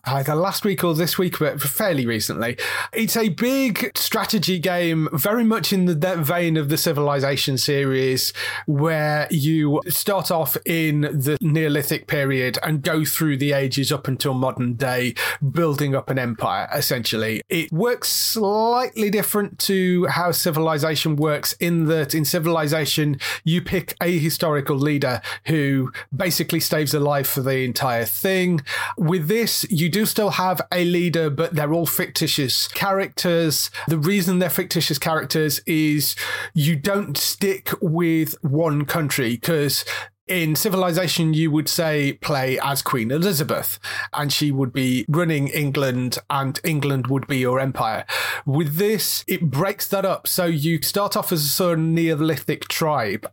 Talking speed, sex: 150 wpm, male